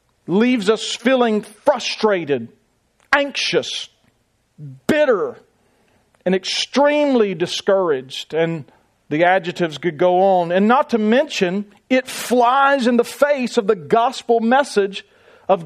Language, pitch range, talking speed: English, 160-225 Hz, 110 wpm